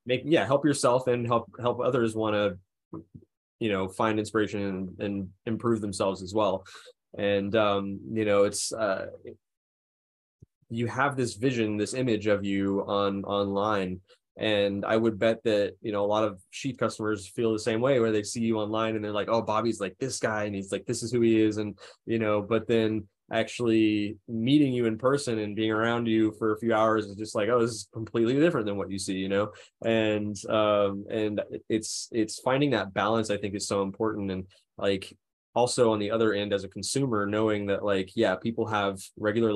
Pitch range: 100-115 Hz